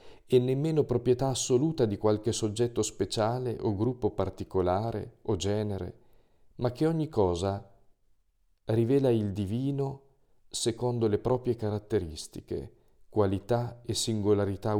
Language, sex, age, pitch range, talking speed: Italian, male, 40-59, 95-115 Hz, 110 wpm